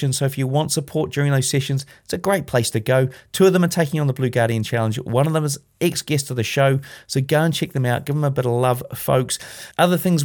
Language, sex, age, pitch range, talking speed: English, male, 30-49, 130-160 Hz, 280 wpm